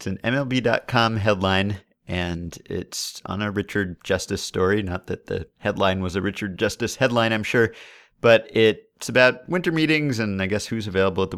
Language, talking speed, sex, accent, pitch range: English, 180 wpm, male, American, 95-120 Hz